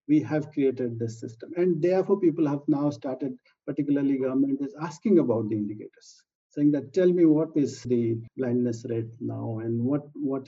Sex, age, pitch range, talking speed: male, 50-69, 125-155 Hz, 180 wpm